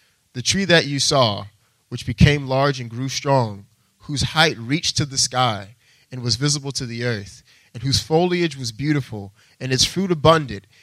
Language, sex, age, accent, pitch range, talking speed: English, male, 30-49, American, 110-135 Hz, 175 wpm